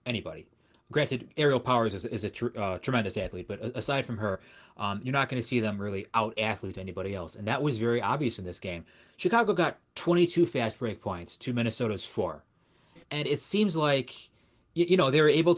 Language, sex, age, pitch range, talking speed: English, male, 20-39, 105-140 Hz, 200 wpm